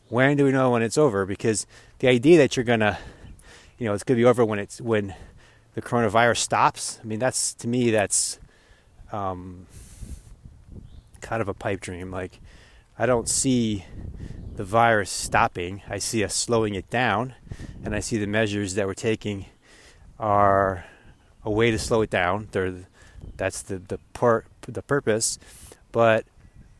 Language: English